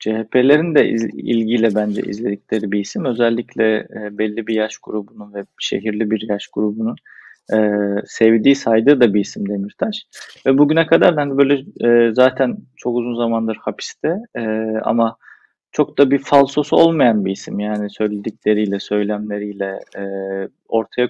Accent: native